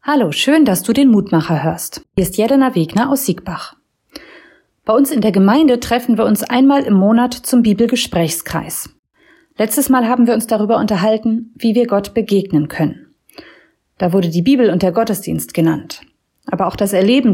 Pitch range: 190-245 Hz